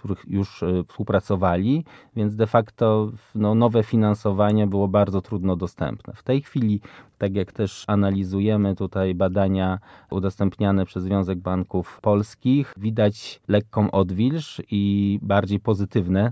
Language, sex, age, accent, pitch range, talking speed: Polish, male, 20-39, native, 95-110 Hz, 120 wpm